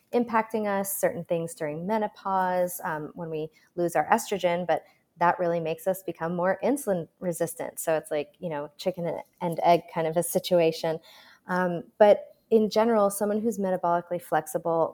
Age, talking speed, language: 20-39, 165 wpm, English